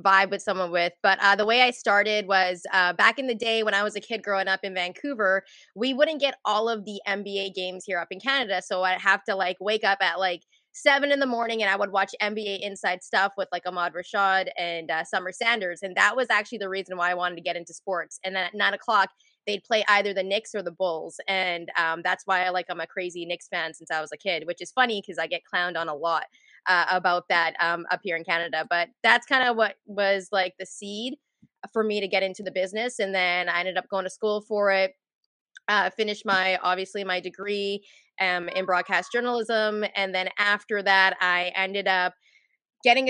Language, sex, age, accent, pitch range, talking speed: English, female, 20-39, American, 180-220 Hz, 235 wpm